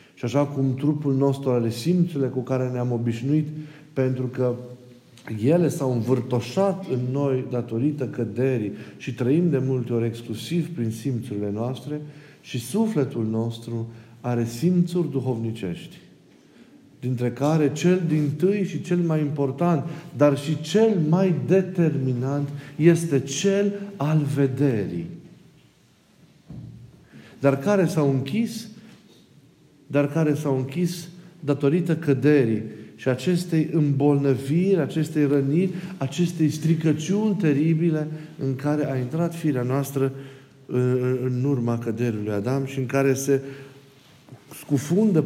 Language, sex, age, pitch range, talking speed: Romanian, male, 50-69, 125-160 Hz, 115 wpm